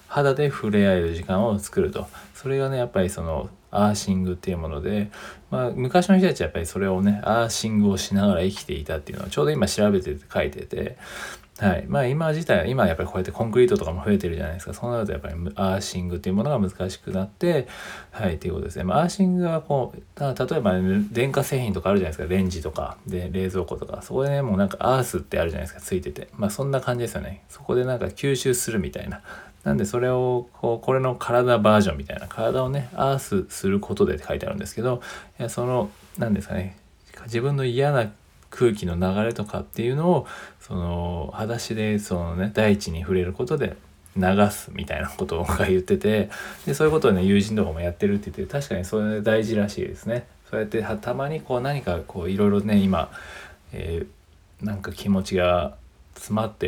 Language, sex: Japanese, male